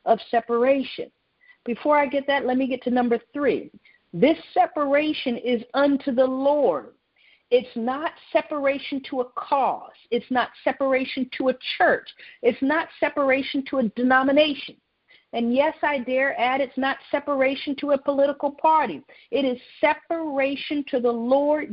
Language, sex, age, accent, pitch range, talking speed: English, female, 50-69, American, 245-305 Hz, 150 wpm